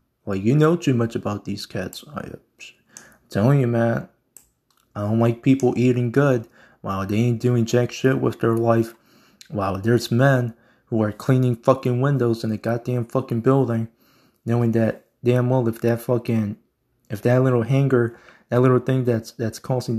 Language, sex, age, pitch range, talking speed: English, male, 20-39, 115-130 Hz, 175 wpm